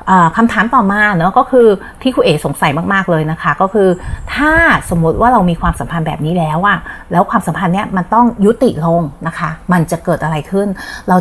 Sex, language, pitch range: female, Thai, 165-210 Hz